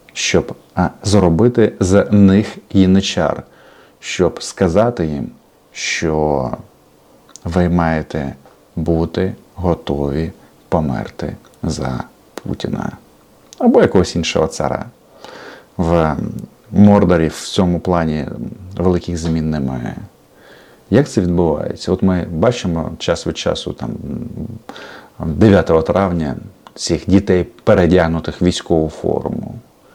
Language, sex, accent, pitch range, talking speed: Russian, male, native, 80-95 Hz, 90 wpm